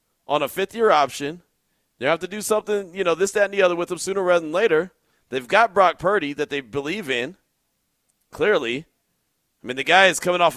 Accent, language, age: American, English, 40-59